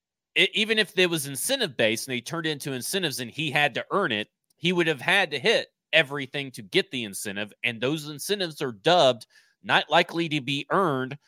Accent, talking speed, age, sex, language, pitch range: American, 205 wpm, 30-49, male, English, 125-165 Hz